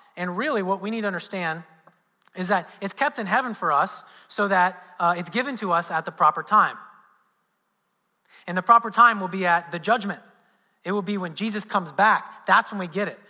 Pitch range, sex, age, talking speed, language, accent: 180-220 Hz, male, 30-49, 210 wpm, English, American